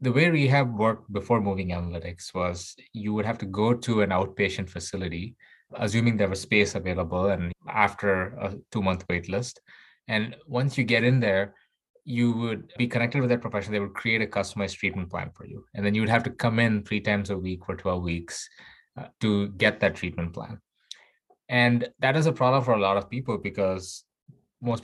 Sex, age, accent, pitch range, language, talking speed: male, 20-39, Indian, 95-120 Hz, English, 200 wpm